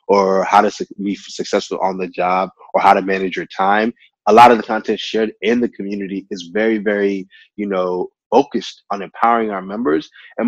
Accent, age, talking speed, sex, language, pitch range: American, 20-39, 195 wpm, male, English, 100-120 Hz